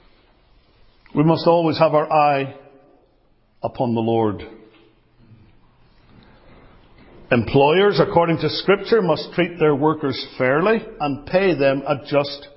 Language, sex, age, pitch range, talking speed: English, male, 50-69, 155-205 Hz, 110 wpm